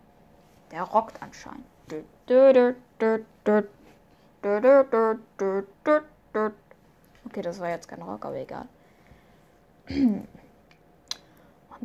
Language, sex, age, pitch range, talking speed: German, female, 10-29, 195-230 Hz, 60 wpm